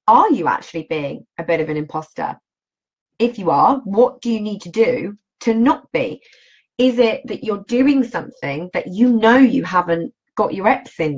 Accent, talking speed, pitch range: British, 195 wpm, 175-250 Hz